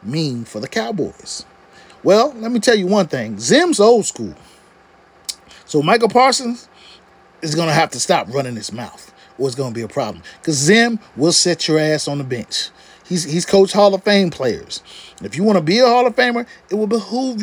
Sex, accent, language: male, American, English